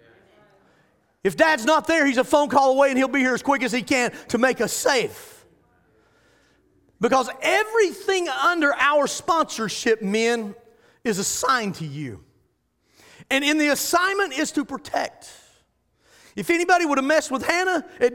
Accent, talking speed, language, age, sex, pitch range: American, 155 wpm, English, 40-59, male, 260-345 Hz